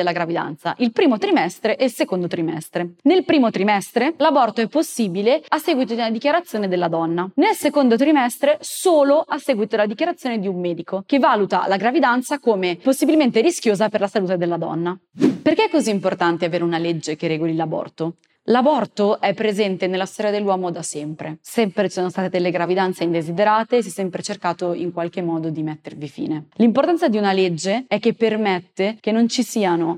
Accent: native